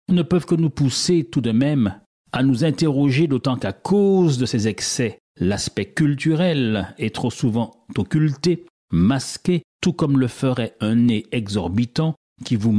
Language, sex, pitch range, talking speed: French, male, 110-155 Hz, 155 wpm